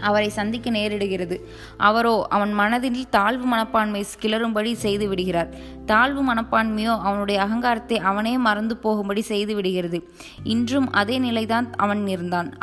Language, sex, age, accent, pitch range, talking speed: Tamil, female, 20-39, native, 200-230 Hz, 105 wpm